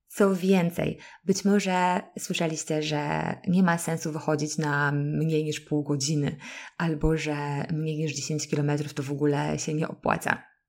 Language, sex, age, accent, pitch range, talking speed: Polish, female, 20-39, native, 155-185 Hz, 150 wpm